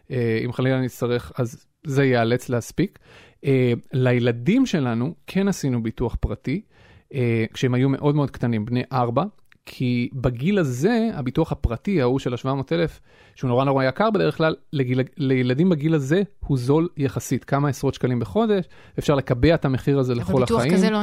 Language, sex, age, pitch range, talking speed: Hebrew, male, 30-49, 125-170 Hz, 155 wpm